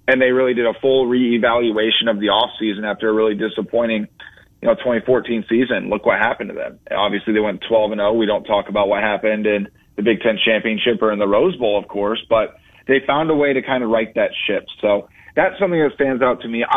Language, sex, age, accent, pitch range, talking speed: English, male, 30-49, American, 110-145 Hz, 235 wpm